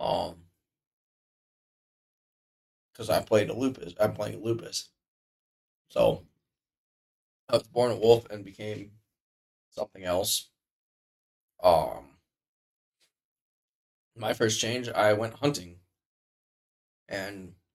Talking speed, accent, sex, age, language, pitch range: 95 wpm, American, male, 20-39, English, 95-115 Hz